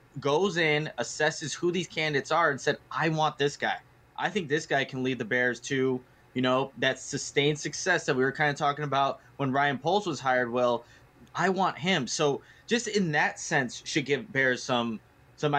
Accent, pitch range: American, 125-155 Hz